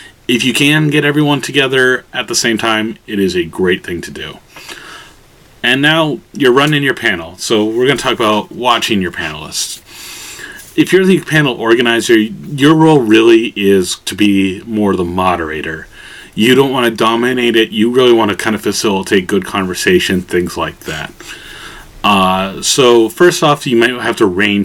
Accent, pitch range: American, 100-125 Hz